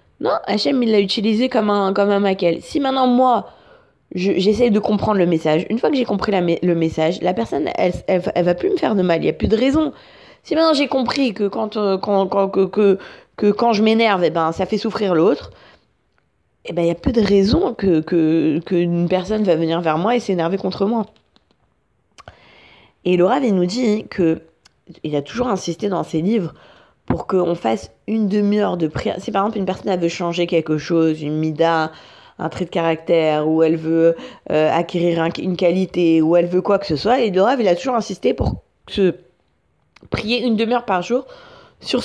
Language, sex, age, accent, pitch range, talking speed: French, female, 20-39, French, 165-215 Hz, 215 wpm